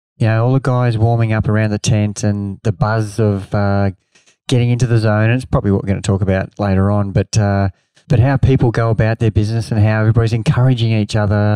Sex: male